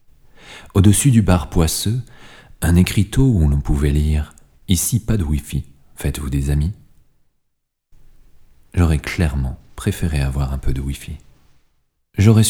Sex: male